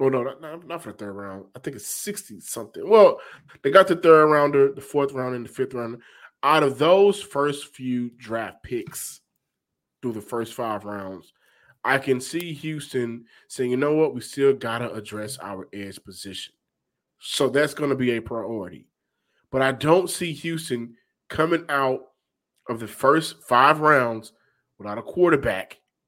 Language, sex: English, male